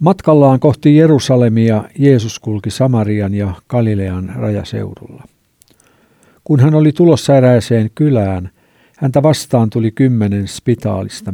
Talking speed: 105 wpm